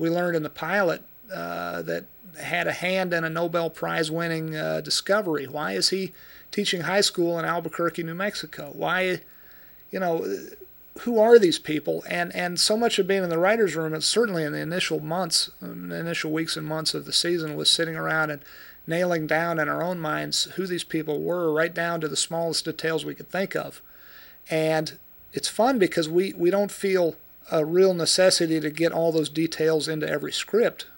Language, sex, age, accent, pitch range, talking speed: English, male, 40-59, American, 155-185 Hz, 195 wpm